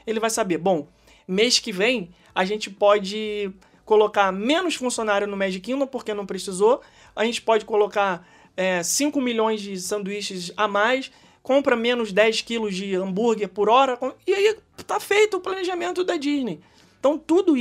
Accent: Brazilian